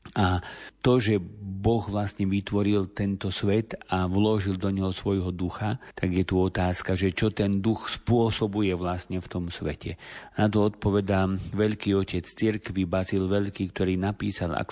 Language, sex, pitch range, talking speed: Slovak, male, 90-100 Hz, 160 wpm